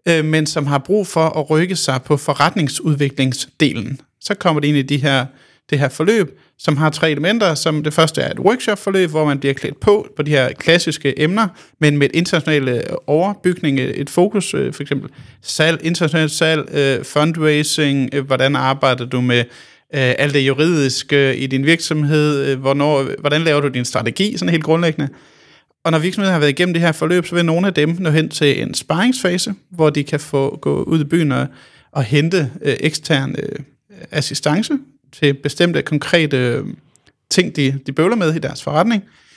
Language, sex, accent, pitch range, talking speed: Danish, male, native, 140-170 Hz, 180 wpm